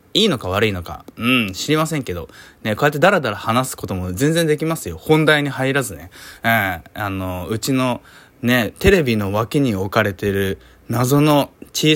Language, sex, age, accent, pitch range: Japanese, male, 20-39, native, 100-140 Hz